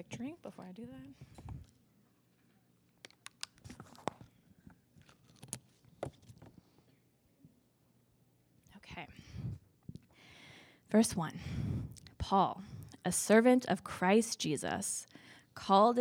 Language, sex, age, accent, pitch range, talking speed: English, female, 20-39, American, 170-205 Hz, 55 wpm